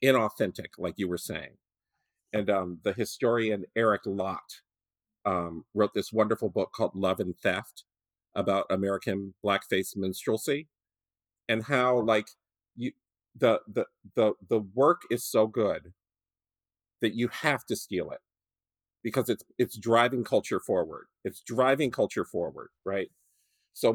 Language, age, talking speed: English, 40-59, 135 wpm